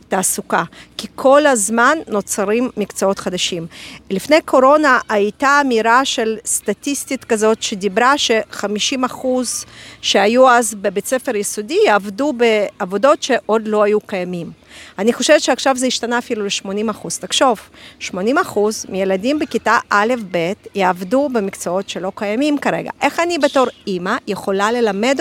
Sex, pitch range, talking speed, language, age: female, 205-260 Hz, 120 wpm, Hebrew, 40-59